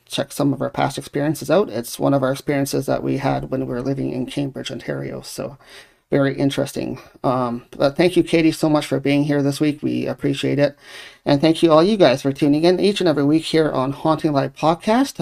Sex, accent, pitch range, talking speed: male, American, 135-160 Hz, 230 wpm